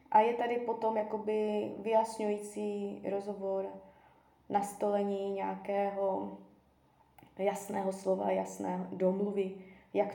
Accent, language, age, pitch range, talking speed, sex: native, Czech, 20-39, 190-230 Hz, 75 wpm, female